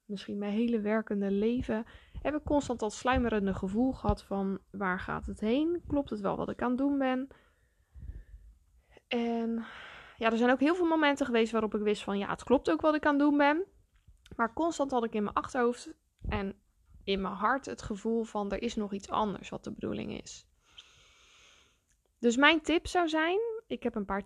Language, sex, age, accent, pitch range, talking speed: Dutch, female, 10-29, Dutch, 205-280 Hz, 200 wpm